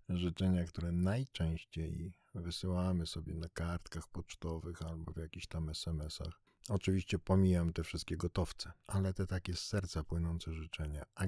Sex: male